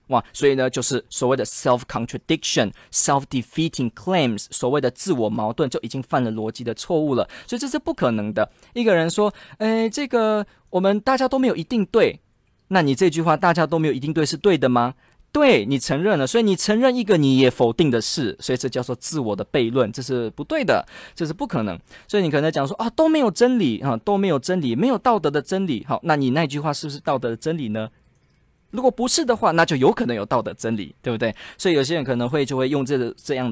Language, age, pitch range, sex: Chinese, 20-39, 125-210 Hz, male